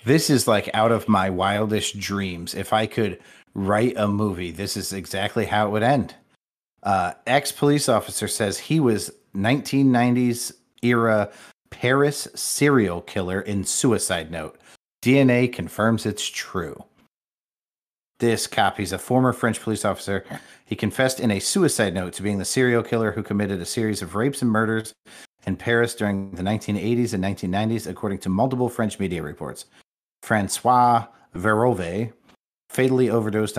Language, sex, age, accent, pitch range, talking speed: English, male, 40-59, American, 95-120 Hz, 145 wpm